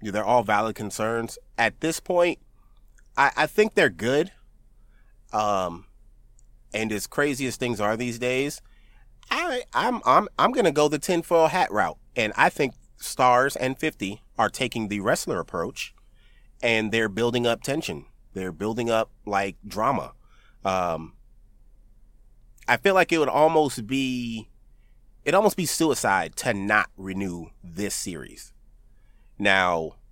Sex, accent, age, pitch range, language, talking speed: male, American, 30-49, 100-130 Hz, English, 140 wpm